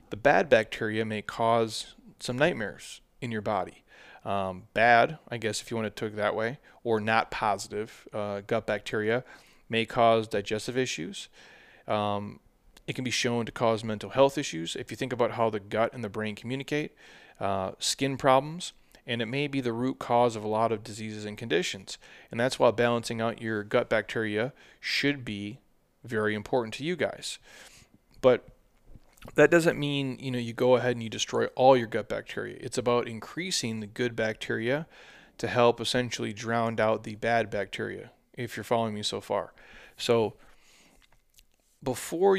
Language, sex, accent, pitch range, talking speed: English, male, American, 110-125 Hz, 175 wpm